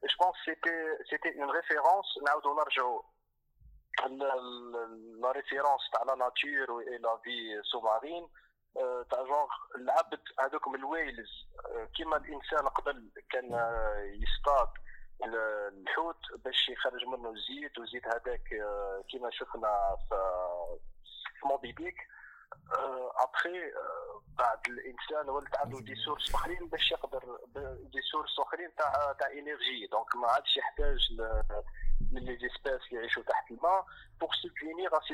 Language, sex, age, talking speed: Arabic, male, 20-39, 100 wpm